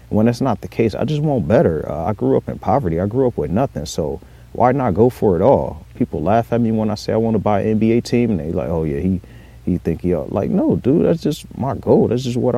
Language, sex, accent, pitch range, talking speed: English, male, American, 80-110 Hz, 285 wpm